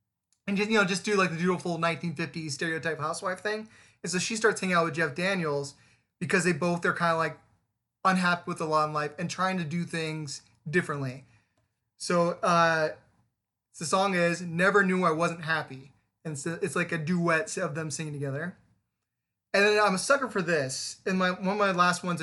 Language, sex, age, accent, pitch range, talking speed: English, male, 20-39, American, 155-185 Hz, 200 wpm